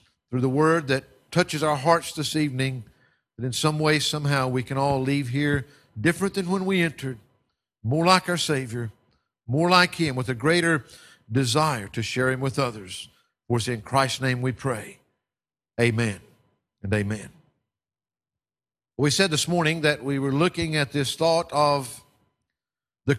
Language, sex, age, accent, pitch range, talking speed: English, male, 50-69, American, 130-165 Hz, 165 wpm